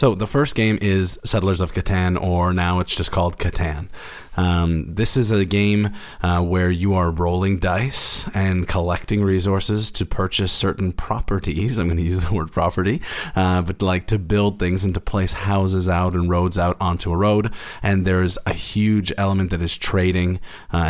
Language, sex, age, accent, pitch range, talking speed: English, male, 30-49, American, 90-100 Hz, 190 wpm